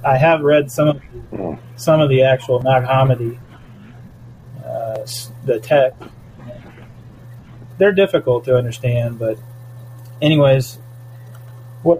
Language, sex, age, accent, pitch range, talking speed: English, male, 30-49, American, 120-135 Hz, 105 wpm